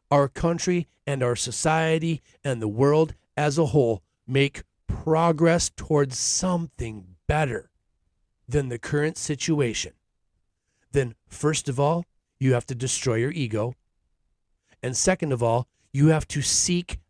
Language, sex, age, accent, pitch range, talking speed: English, male, 40-59, American, 105-155 Hz, 135 wpm